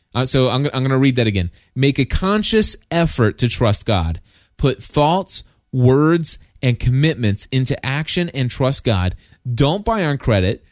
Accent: American